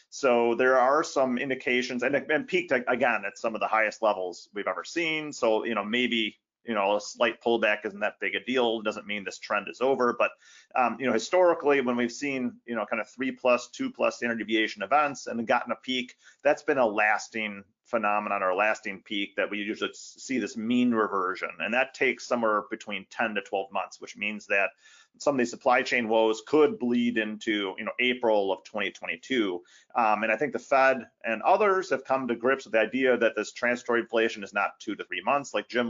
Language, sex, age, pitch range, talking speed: English, male, 30-49, 110-130 Hz, 220 wpm